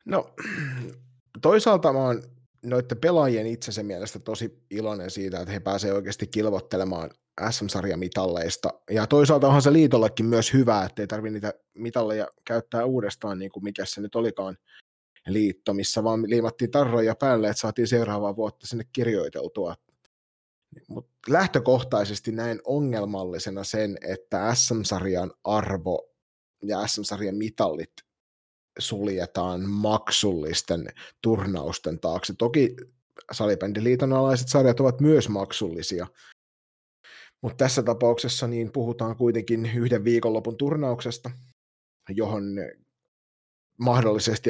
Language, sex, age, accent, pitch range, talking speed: Finnish, male, 30-49, native, 100-125 Hz, 110 wpm